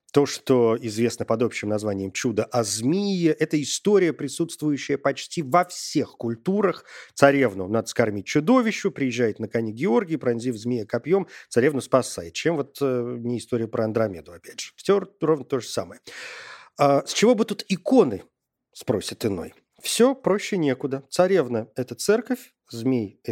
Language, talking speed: Russian, 155 wpm